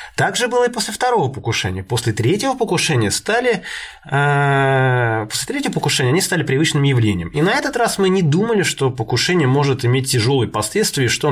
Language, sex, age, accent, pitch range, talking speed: Russian, male, 20-39, native, 115-170 Hz, 170 wpm